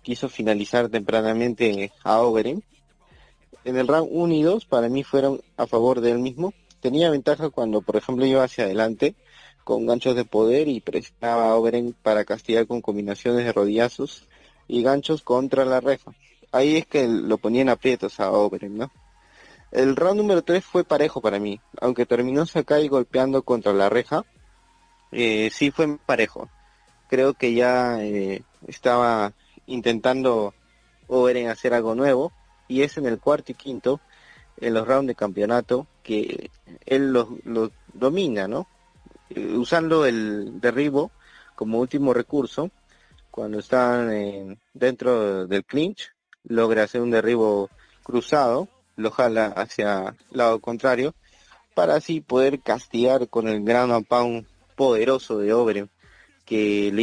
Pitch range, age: 110-135 Hz, 30-49